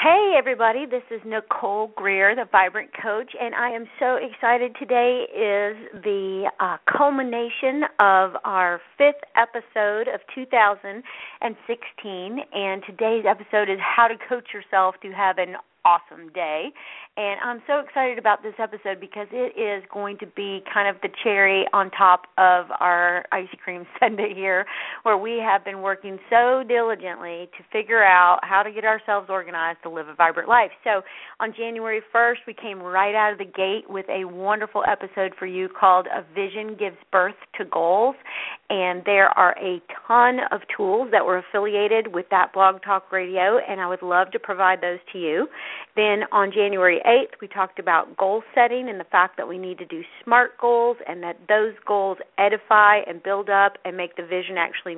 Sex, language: female, English